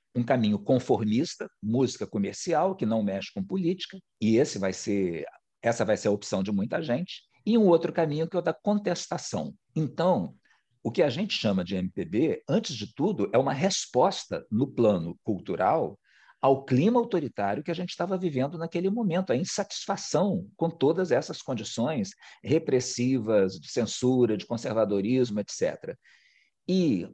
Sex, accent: male, Brazilian